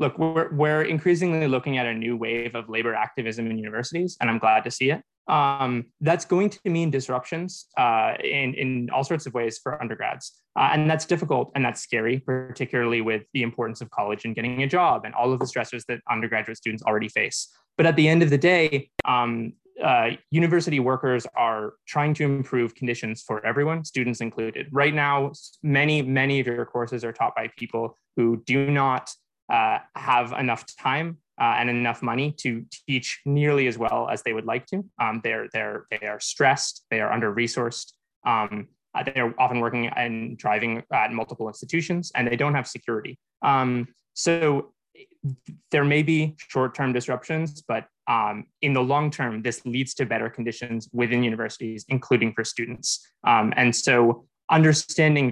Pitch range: 115-150 Hz